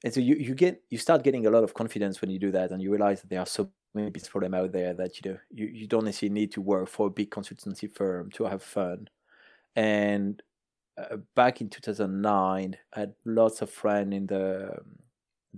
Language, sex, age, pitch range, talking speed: English, male, 20-39, 95-105 Hz, 230 wpm